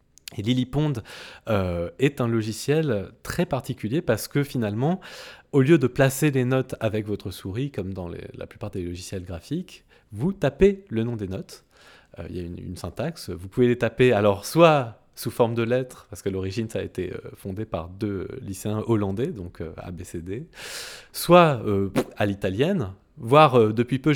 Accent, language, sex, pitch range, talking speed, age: French, French, male, 95-135 Hz, 180 wpm, 20-39